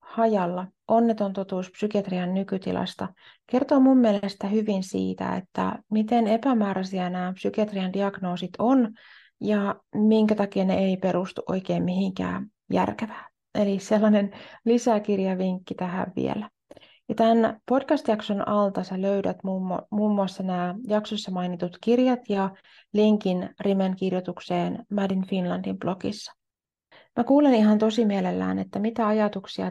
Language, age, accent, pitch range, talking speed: Finnish, 30-49, native, 185-220 Hz, 115 wpm